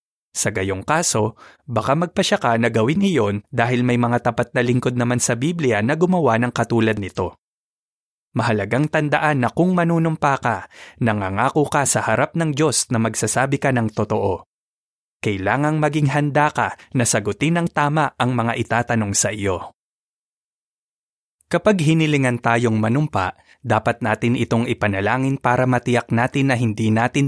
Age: 20-39